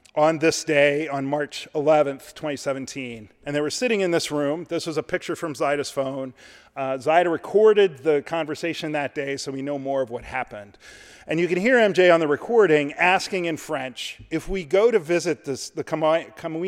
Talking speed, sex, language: 200 wpm, male, English